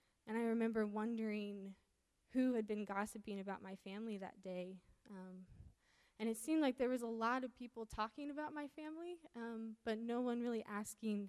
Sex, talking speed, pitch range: female, 180 wpm, 205-235 Hz